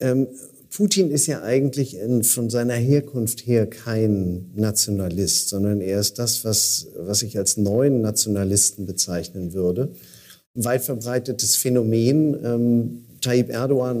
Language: German